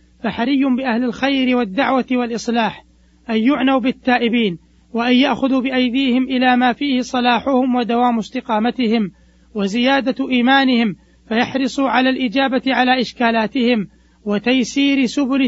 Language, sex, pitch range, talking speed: Arabic, male, 225-255 Hz, 100 wpm